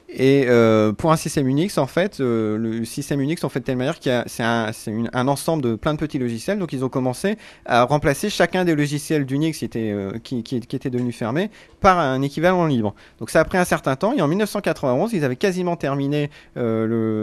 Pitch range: 115-150 Hz